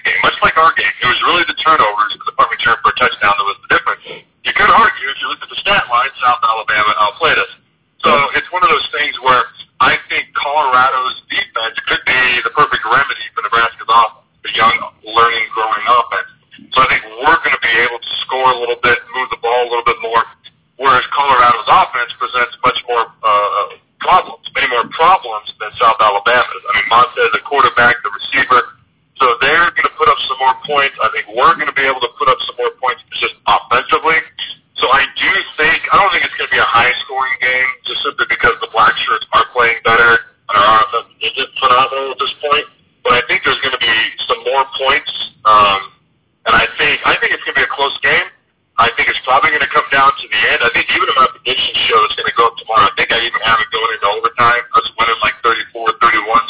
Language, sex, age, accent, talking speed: English, male, 40-59, American, 230 wpm